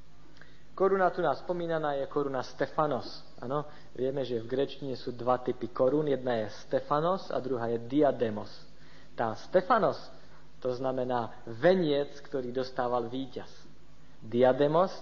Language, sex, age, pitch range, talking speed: Slovak, male, 50-69, 125-155 Hz, 130 wpm